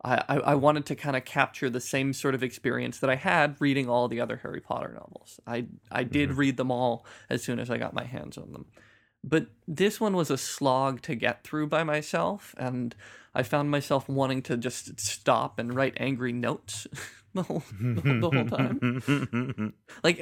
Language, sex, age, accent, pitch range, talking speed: English, male, 20-39, American, 125-150 Hz, 195 wpm